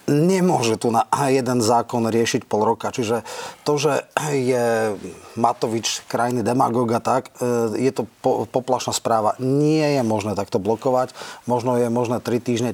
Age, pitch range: 30-49, 110-130 Hz